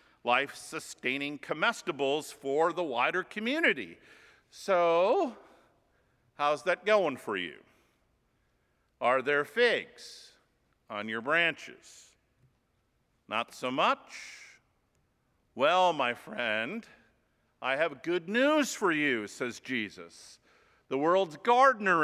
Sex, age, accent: male, 50-69, American